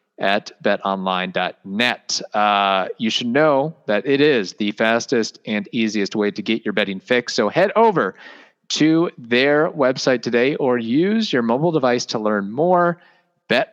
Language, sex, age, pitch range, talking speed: English, male, 30-49, 105-135 Hz, 150 wpm